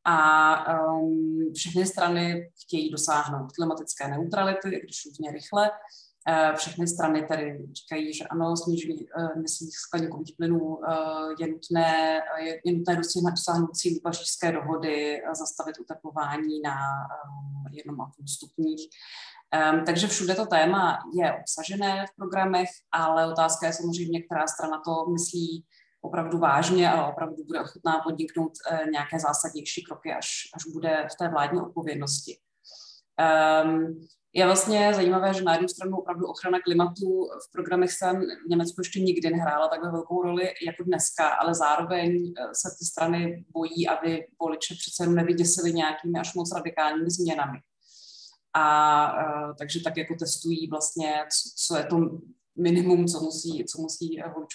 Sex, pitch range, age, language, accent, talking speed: female, 155-175 Hz, 30-49, Czech, native, 140 wpm